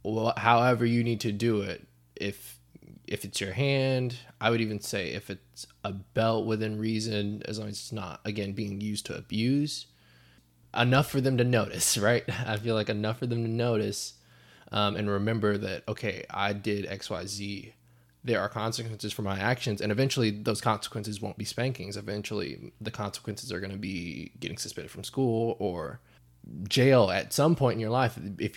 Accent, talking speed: American, 185 wpm